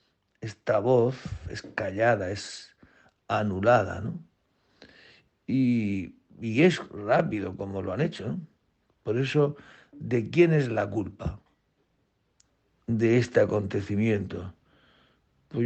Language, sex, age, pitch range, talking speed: Spanish, male, 60-79, 100-130 Hz, 100 wpm